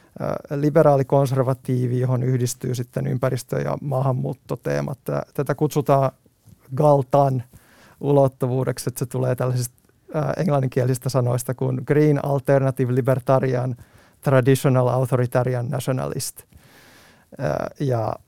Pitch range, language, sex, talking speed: 125-140 Hz, Finnish, male, 85 wpm